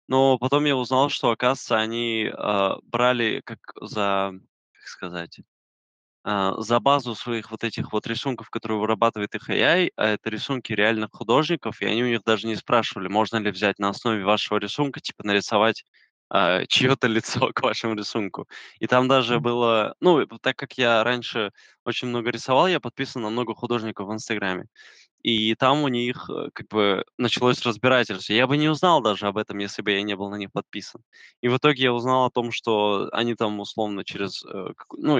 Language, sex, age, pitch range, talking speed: Russian, male, 20-39, 105-130 Hz, 180 wpm